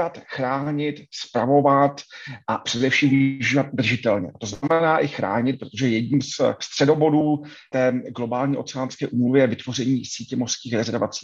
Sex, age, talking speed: male, 40-59, 125 wpm